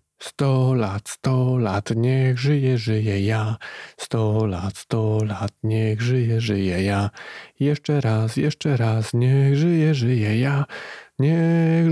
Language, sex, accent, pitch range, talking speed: Polish, male, native, 110-135 Hz, 130 wpm